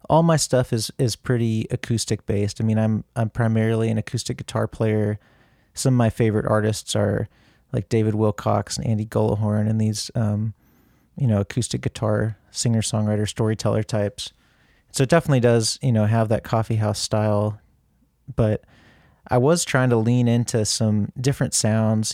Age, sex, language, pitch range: 30-49, male, English, 110-120 Hz